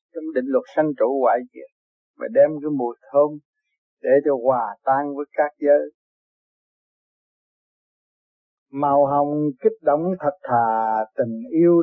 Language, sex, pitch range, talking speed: Vietnamese, male, 130-160 Hz, 125 wpm